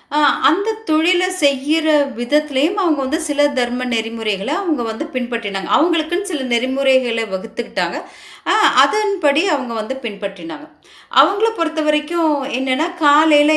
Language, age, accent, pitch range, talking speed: Tamil, 30-49, native, 210-310 Hz, 110 wpm